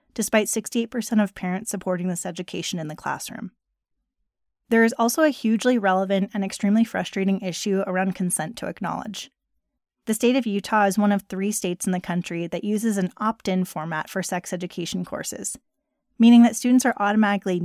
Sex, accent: female, American